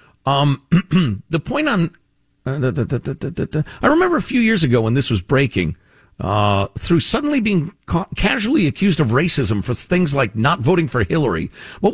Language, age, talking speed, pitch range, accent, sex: English, 50-69, 155 wpm, 115-175 Hz, American, male